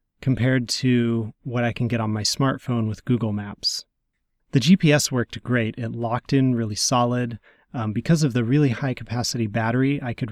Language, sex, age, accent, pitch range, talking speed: English, male, 30-49, American, 115-140 Hz, 175 wpm